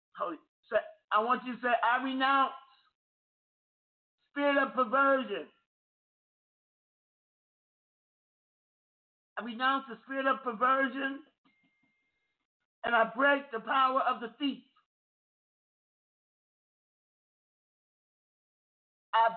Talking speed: 80 wpm